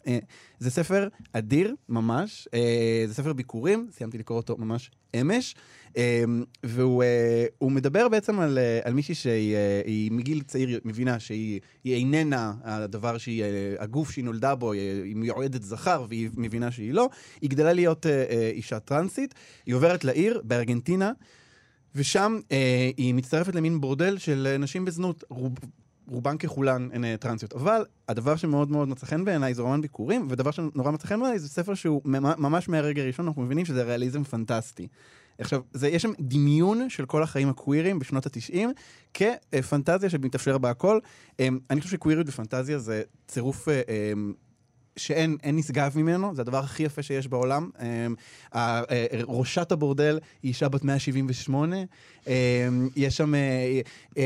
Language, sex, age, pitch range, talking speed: Hebrew, male, 20-39, 120-155 Hz, 150 wpm